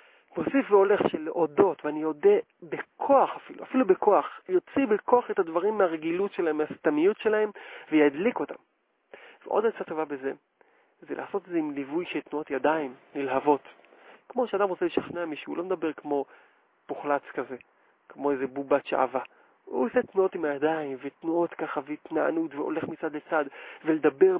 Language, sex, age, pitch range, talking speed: Hebrew, male, 40-59, 150-230 Hz, 150 wpm